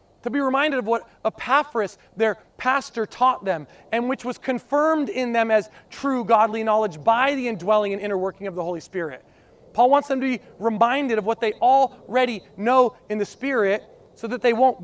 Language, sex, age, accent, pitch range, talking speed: English, male, 30-49, American, 180-240 Hz, 195 wpm